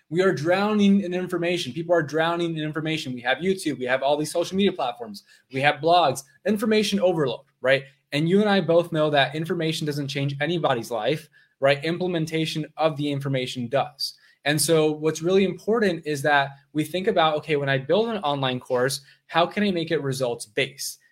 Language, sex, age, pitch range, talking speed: English, male, 20-39, 140-175 Hz, 190 wpm